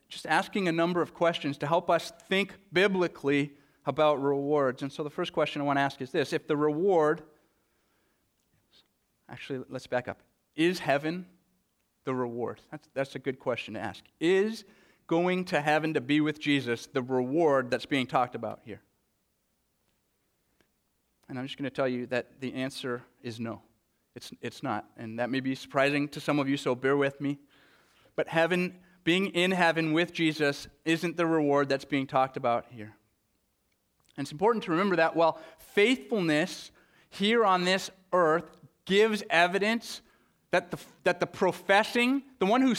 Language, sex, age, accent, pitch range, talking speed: English, male, 40-59, American, 140-185 Hz, 175 wpm